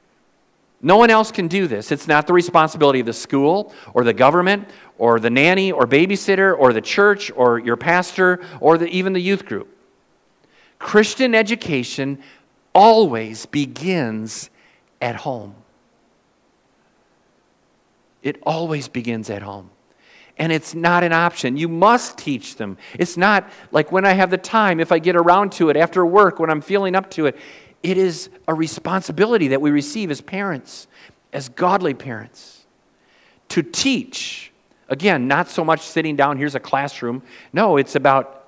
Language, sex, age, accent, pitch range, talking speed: English, male, 50-69, American, 125-180 Hz, 155 wpm